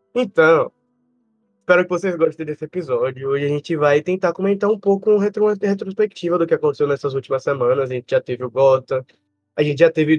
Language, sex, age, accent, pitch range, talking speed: Portuguese, male, 20-39, Brazilian, 140-195 Hz, 195 wpm